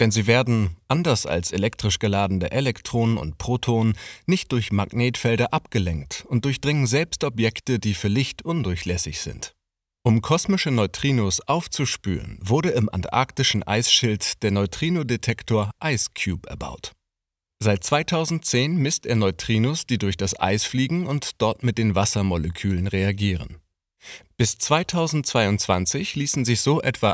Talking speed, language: 125 wpm, German